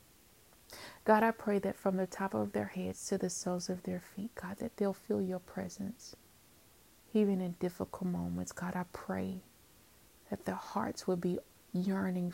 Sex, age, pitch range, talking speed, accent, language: female, 30-49, 180-210 Hz, 170 wpm, American, English